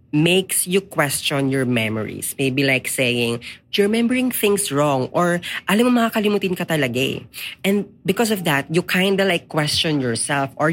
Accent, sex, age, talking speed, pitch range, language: native, female, 20-39, 170 wpm, 125-165 Hz, Filipino